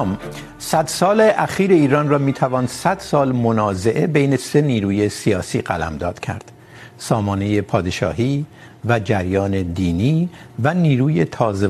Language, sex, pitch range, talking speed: Urdu, male, 100-145 Hz, 125 wpm